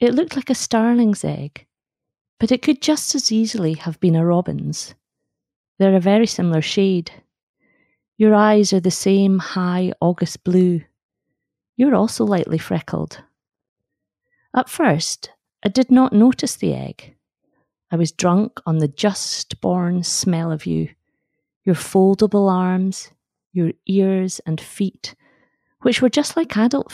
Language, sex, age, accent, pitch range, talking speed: English, female, 40-59, British, 170-215 Hz, 140 wpm